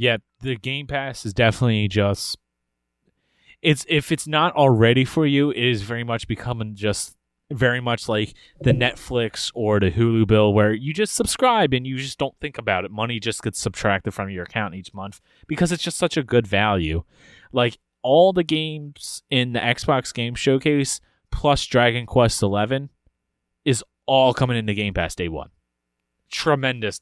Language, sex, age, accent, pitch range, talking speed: English, male, 20-39, American, 100-140 Hz, 175 wpm